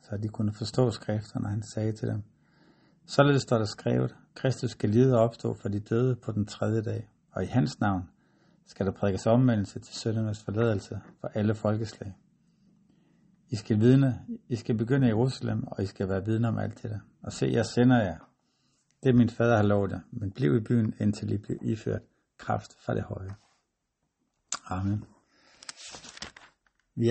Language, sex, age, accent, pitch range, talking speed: Danish, male, 60-79, native, 105-125 Hz, 180 wpm